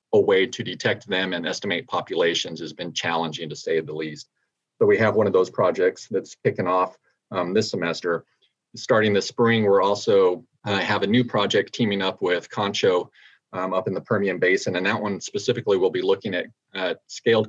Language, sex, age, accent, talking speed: English, male, 40-59, American, 200 wpm